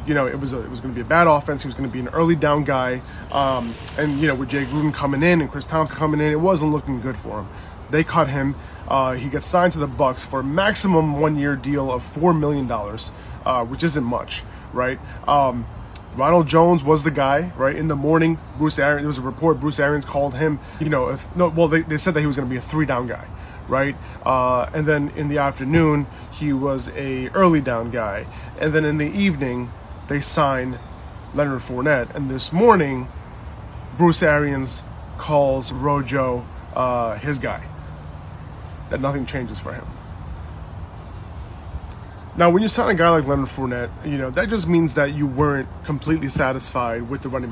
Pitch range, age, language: 120-150 Hz, 30-49, English